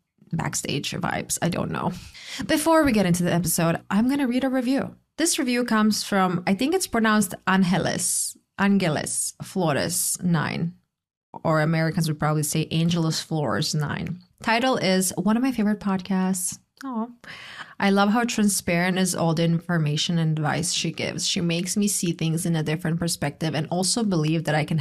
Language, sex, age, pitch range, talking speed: English, female, 20-39, 165-210 Hz, 170 wpm